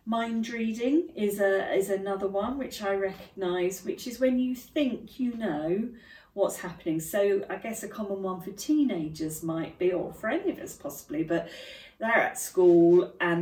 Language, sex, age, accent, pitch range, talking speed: English, female, 40-59, British, 165-210 Hz, 180 wpm